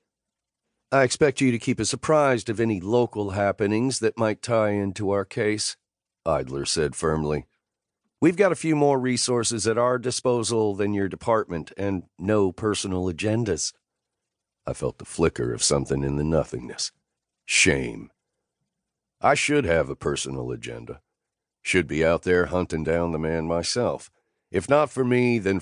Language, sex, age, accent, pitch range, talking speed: English, male, 50-69, American, 85-115 Hz, 155 wpm